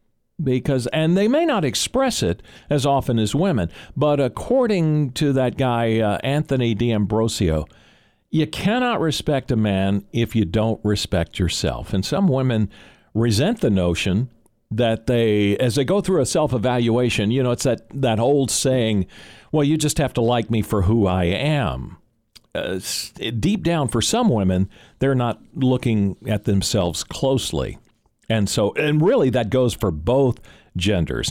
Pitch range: 105-145 Hz